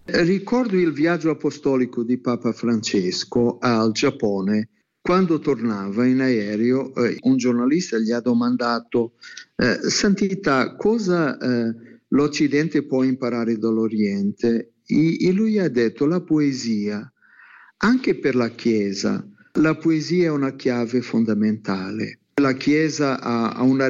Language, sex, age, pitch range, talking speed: Italian, male, 50-69, 115-150 Hz, 110 wpm